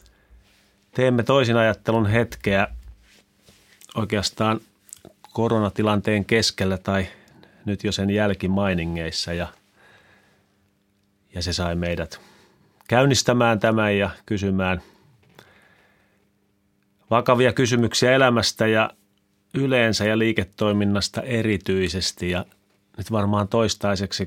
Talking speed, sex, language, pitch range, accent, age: 80 wpm, male, Finnish, 95-110 Hz, native, 30-49